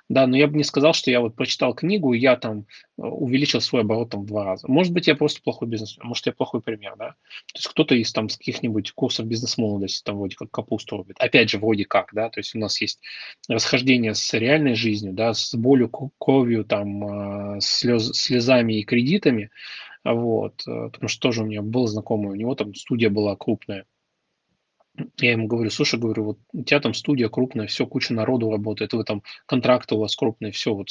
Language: Russian